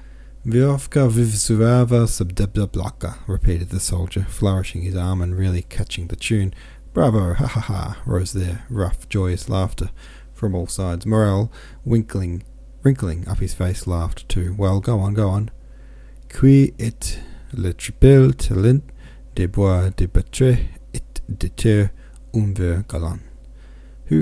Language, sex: English, male